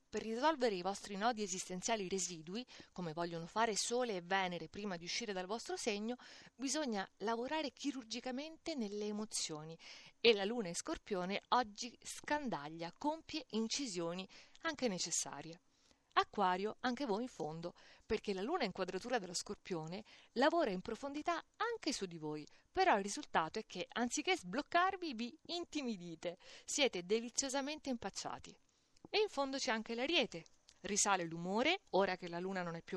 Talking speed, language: 145 wpm, Italian